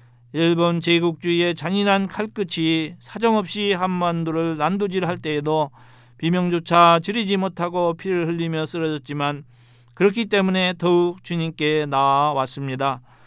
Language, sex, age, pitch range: Korean, male, 40-59, 150-185 Hz